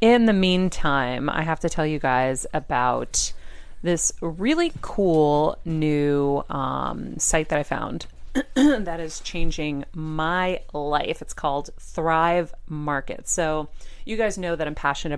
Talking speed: 140 wpm